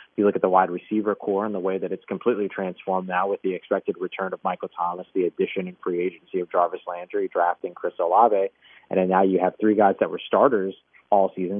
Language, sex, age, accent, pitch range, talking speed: English, male, 30-49, American, 90-105 Hz, 235 wpm